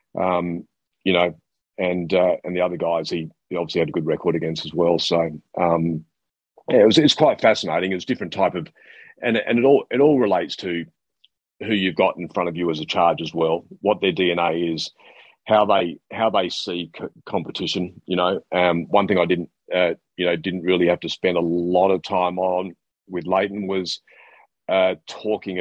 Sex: male